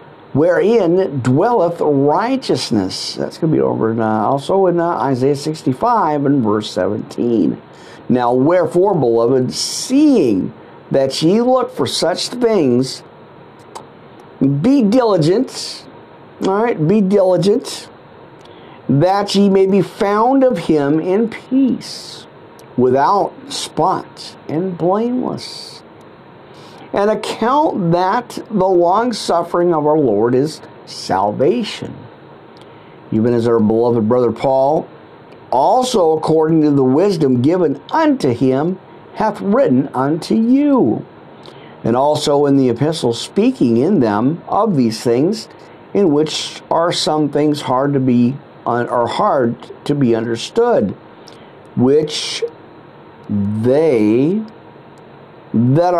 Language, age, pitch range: English, 50-69, 130-205 Hz